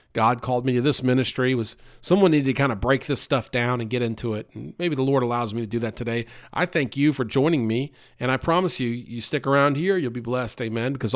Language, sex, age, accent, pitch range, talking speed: English, male, 50-69, American, 125-165 Hz, 265 wpm